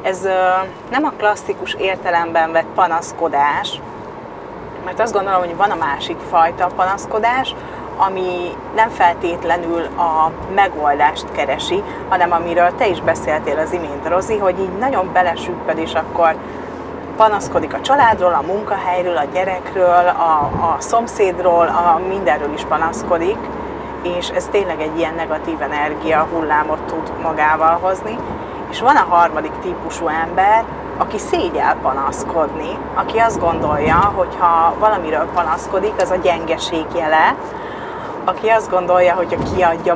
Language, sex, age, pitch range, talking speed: Hungarian, female, 30-49, 165-195 Hz, 130 wpm